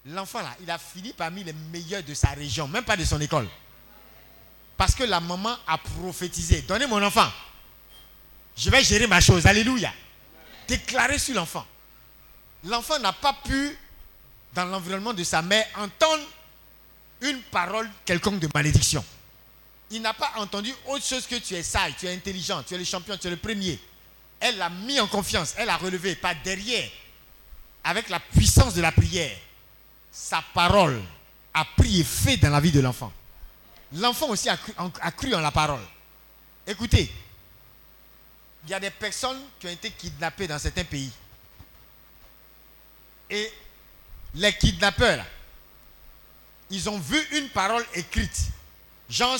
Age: 50-69